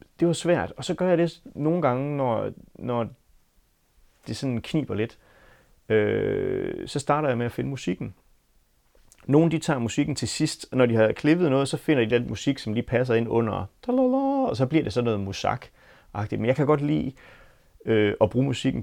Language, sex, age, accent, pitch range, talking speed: Danish, male, 30-49, native, 105-145 Hz, 200 wpm